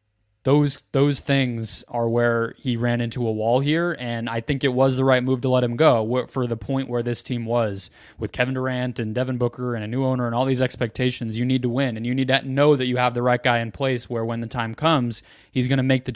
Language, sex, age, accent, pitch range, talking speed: English, male, 20-39, American, 115-130 Hz, 265 wpm